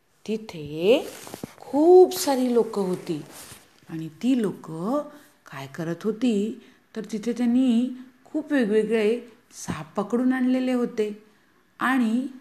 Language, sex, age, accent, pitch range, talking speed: Hindi, female, 50-69, native, 175-250 Hz, 65 wpm